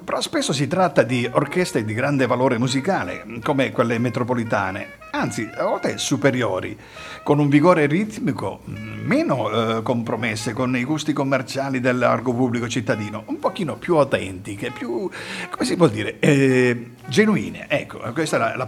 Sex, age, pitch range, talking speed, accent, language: male, 50-69, 115-160 Hz, 150 wpm, native, Italian